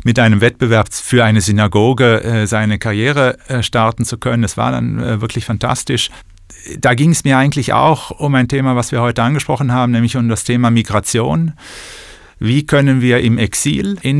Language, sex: German, male